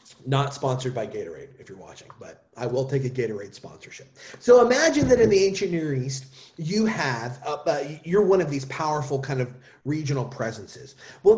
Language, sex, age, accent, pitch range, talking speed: English, male, 30-49, American, 135-200 Hz, 200 wpm